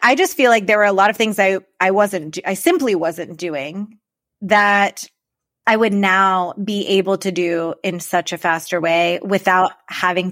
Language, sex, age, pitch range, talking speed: English, female, 20-39, 185-220 Hz, 185 wpm